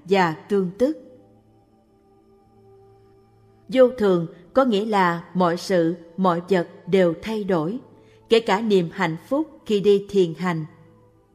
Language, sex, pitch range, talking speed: Vietnamese, female, 165-215 Hz, 125 wpm